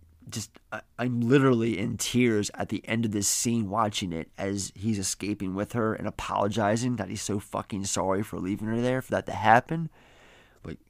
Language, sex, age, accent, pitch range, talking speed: English, male, 30-49, American, 100-120 Hz, 195 wpm